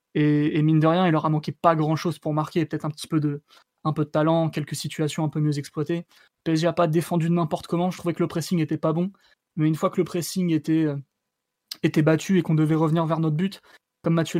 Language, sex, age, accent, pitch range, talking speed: French, male, 20-39, French, 155-170 Hz, 260 wpm